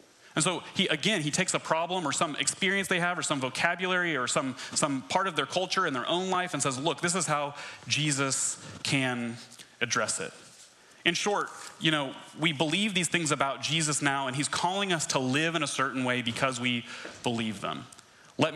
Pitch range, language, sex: 130-160 Hz, English, male